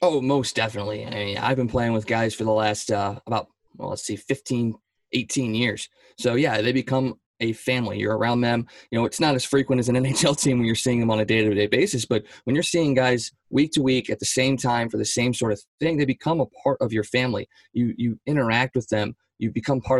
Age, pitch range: 20-39, 110-130 Hz